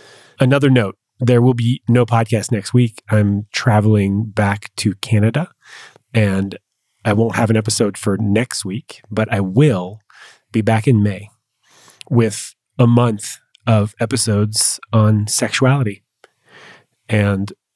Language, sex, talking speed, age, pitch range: English, male, 130 wpm, 30-49, 105-125 Hz